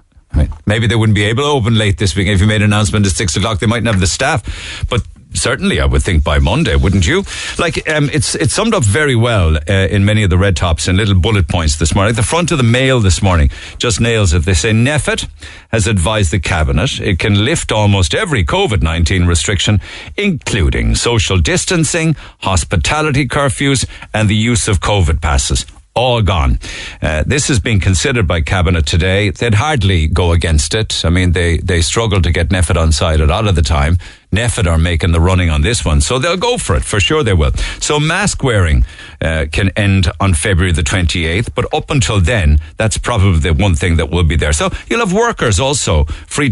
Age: 60-79